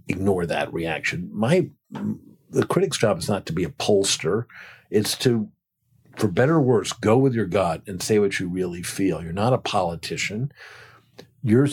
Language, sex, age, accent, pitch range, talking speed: English, male, 50-69, American, 95-120 Hz, 175 wpm